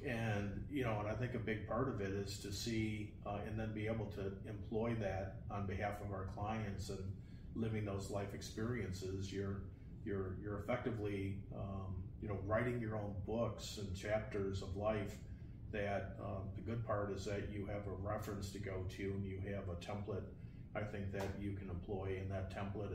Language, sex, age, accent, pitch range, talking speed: English, male, 40-59, American, 95-105 Hz, 195 wpm